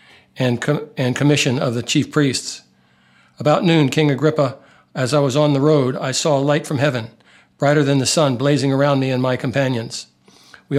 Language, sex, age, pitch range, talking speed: English, male, 60-79, 125-150 Hz, 195 wpm